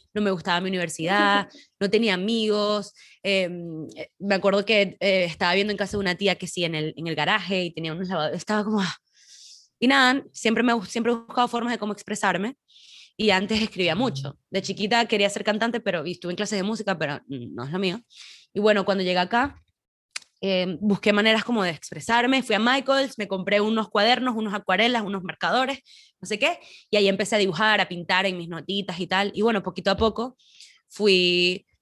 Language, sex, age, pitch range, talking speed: Spanish, female, 20-39, 180-220 Hz, 205 wpm